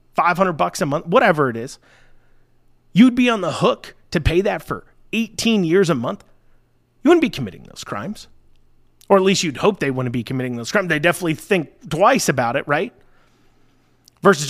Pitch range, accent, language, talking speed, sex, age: 160-220 Hz, American, English, 185 wpm, male, 30-49